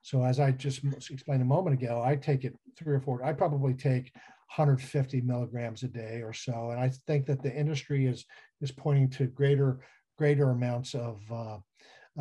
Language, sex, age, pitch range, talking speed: English, male, 50-69, 125-145 Hz, 195 wpm